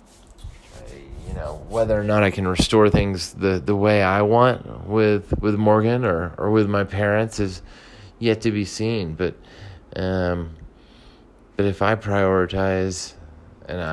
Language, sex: English, male